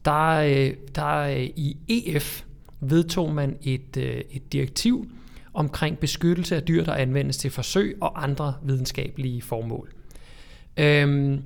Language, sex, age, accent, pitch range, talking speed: Danish, male, 30-49, native, 135-160 Hz, 115 wpm